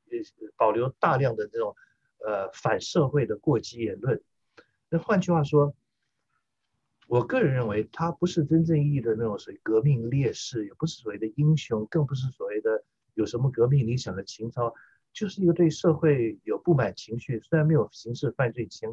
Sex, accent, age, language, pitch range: male, native, 50-69, Chinese, 115-165 Hz